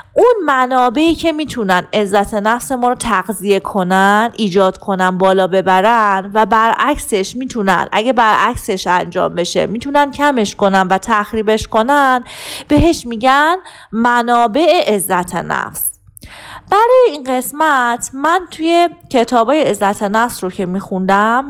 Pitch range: 200-270 Hz